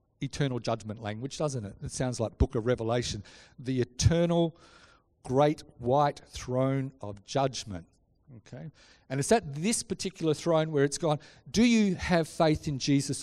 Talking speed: 155 wpm